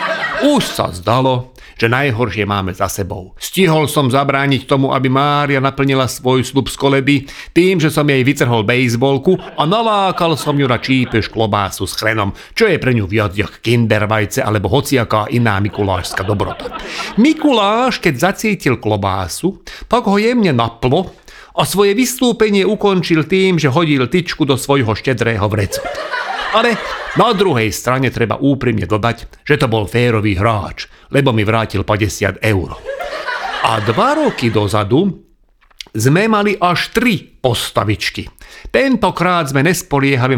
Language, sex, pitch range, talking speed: Slovak, male, 110-170 Hz, 140 wpm